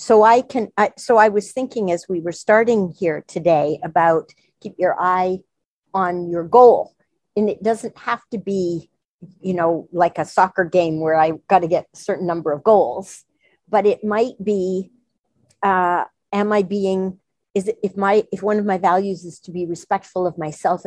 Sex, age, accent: female, 50-69, American